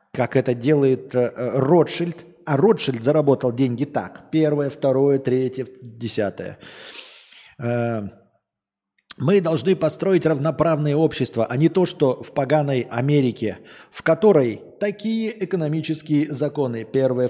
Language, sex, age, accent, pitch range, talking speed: Russian, male, 20-39, native, 115-155 Hz, 110 wpm